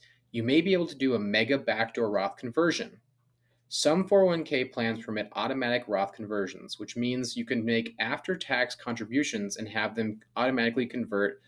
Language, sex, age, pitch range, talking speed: English, male, 20-39, 110-140 Hz, 155 wpm